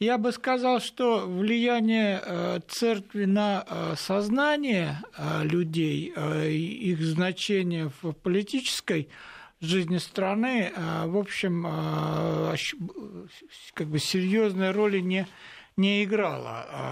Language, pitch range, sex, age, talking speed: Russian, 160-205 Hz, male, 60-79, 85 wpm